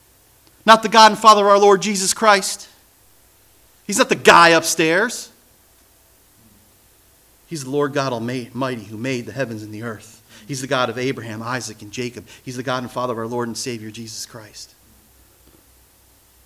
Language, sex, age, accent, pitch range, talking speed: English, male, 40-59, American, 115-170 Hz, 170 wpm